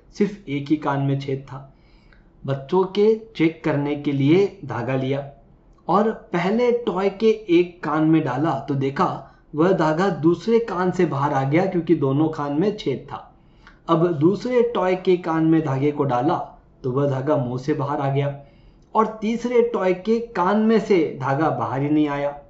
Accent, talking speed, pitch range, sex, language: native, 125 wpm, 145-190 Hz, male, Hindi